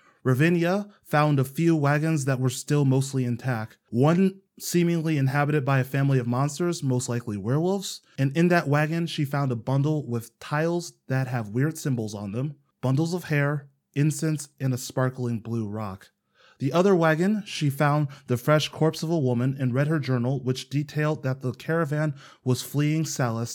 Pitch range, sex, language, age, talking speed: 125-155 Hz, male, English, 20-39, 175 wpm